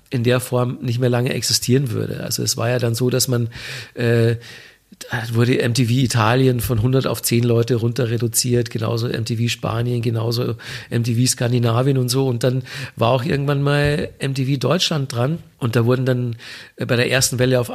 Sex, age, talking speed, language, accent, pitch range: male, 50-69, 185 wpm, German, German, 120-145 Hz